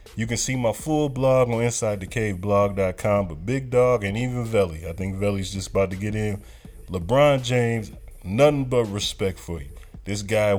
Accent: American